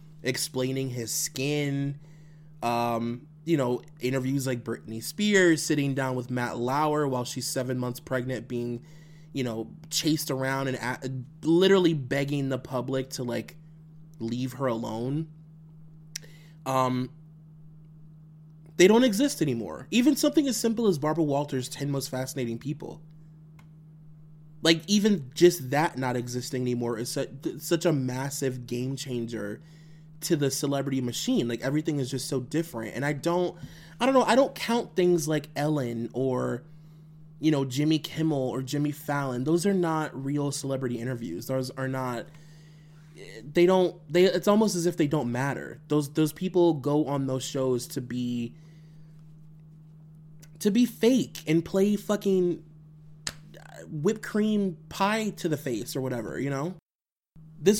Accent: American